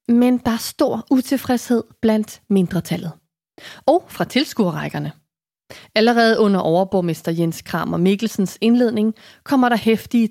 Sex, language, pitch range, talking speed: female, Danish, 180-235 Hz, 120 wpm